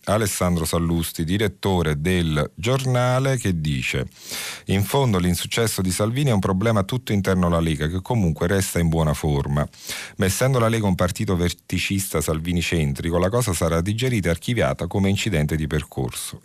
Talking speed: 155 wpm